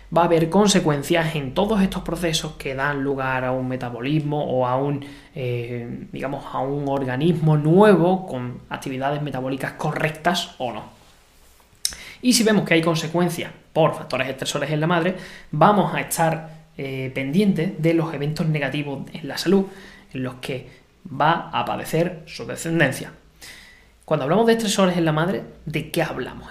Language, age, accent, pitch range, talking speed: Spanish, 20-39, Spanish, 135-175 Hz, 155 wpm